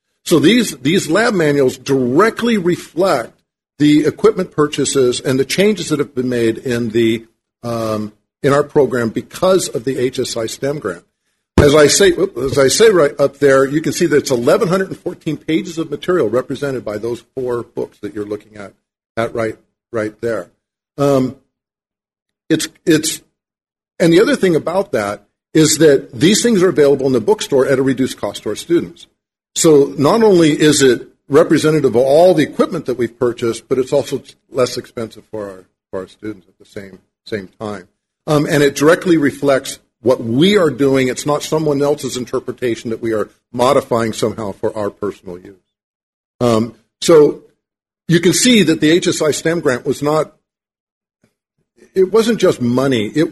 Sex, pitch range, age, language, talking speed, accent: male, 115-160 Hz, 50-69, English, 170 wpm, American